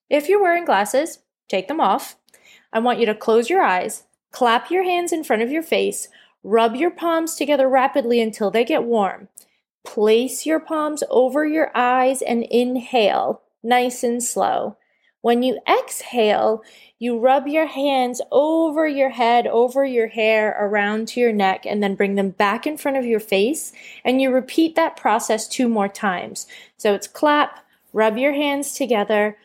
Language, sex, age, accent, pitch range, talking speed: English, female, 20-39, American, 210-270 Hz, 170 wpm